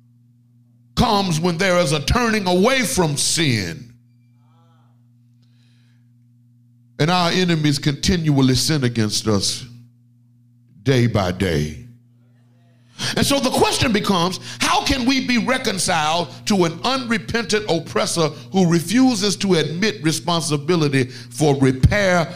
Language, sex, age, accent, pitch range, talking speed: English, male, 50-69, American, 120-180 Hz, 105 wpm